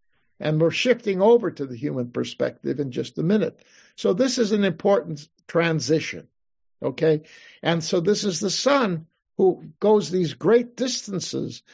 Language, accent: English, American